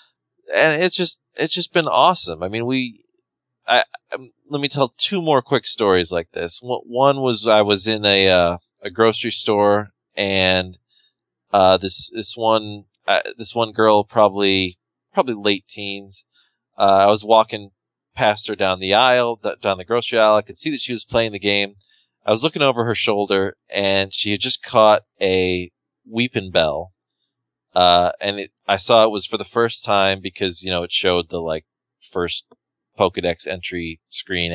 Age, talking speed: 20-39, 175 wpm